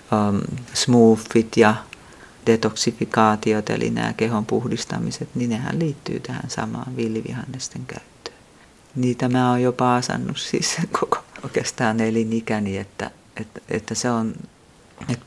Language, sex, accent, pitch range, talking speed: Finnish, female, native, 115-130 Hz, 115 wpm